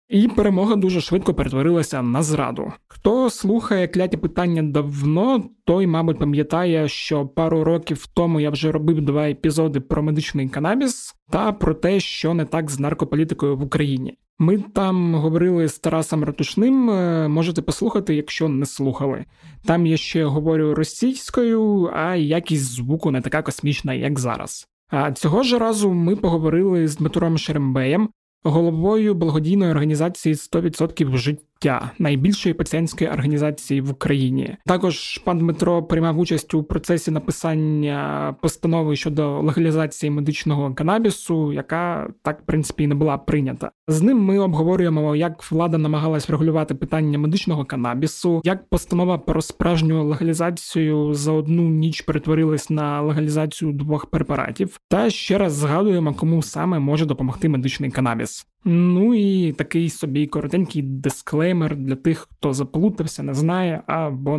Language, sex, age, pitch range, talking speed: Ukrainian, male, 20-39, 150-175 Hz, 140 wpm